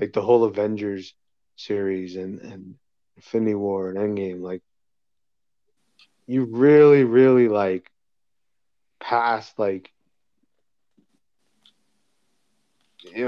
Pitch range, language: 100-125 Hz, English